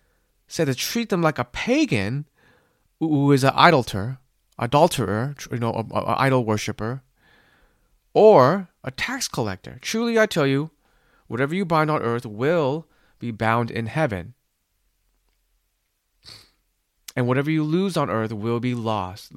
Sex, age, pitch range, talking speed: male, 30-49, 110-145 Hz, 135 wpm